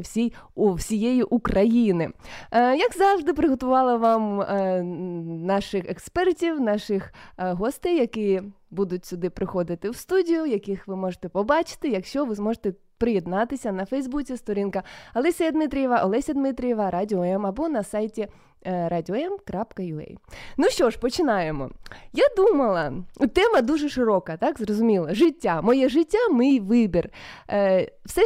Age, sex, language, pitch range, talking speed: 20-39, female, Ukrainian, 195-280 Hz, 130 wpm